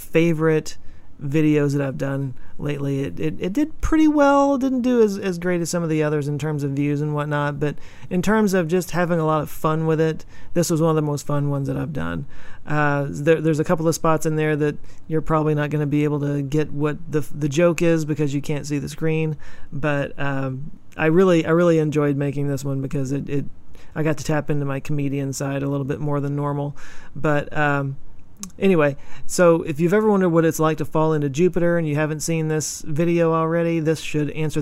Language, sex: English, male